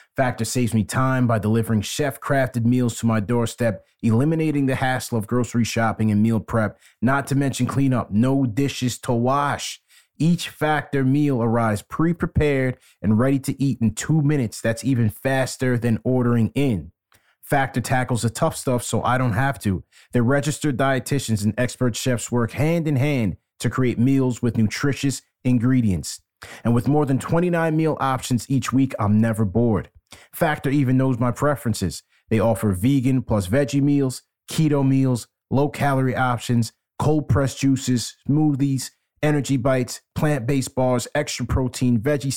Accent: American